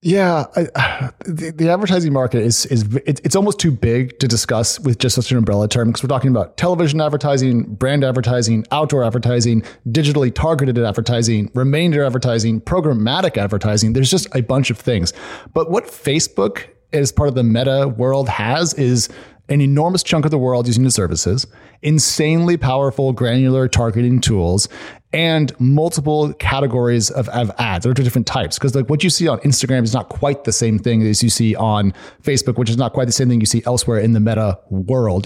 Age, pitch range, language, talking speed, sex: 30-49, 115-145 Hz, English, 190 wpm, male